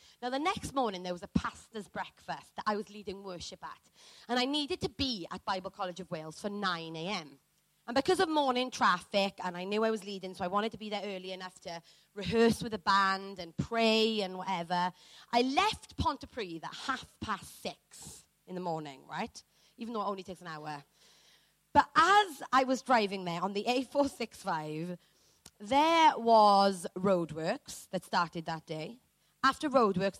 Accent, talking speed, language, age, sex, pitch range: British, 190 wpm, English, 30-49, female, 180-235 Hz